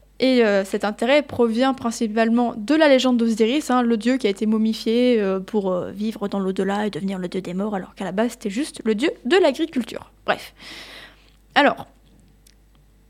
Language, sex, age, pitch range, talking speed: French, female, 20-39, 215-280 Hz, 170 wpm